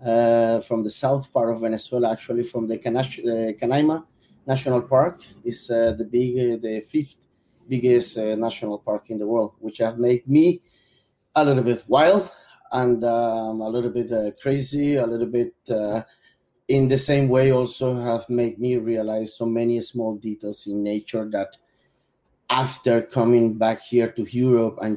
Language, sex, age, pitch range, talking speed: English, male, 30-49, 110-125 Hz, 170 wpm